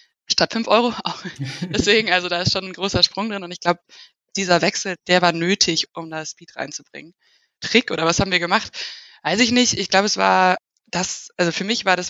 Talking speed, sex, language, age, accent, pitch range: 215 wpm, female, German, 20-39, German, 170-195 Hz